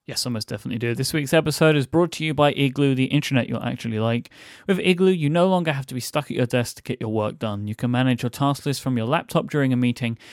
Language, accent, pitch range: English, British, 120-160 Hz